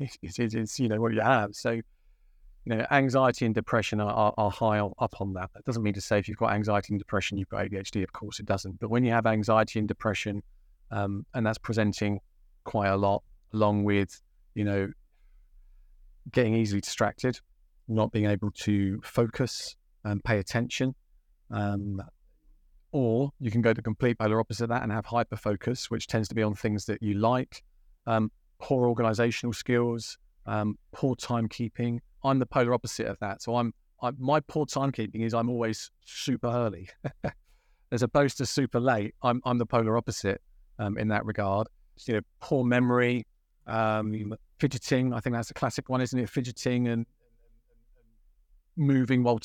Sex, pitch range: male, 105-120 Hz